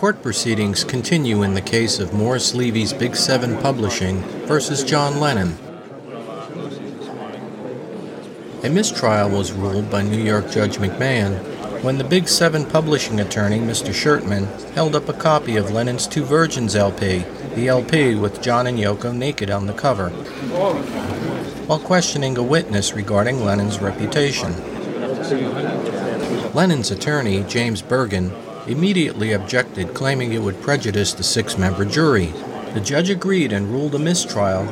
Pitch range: 100-145 Hz